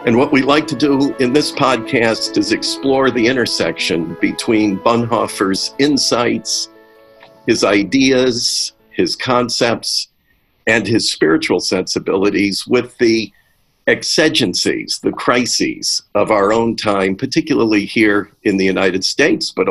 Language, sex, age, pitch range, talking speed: English, male, 50-69, 105-135 Hz, 120 wpm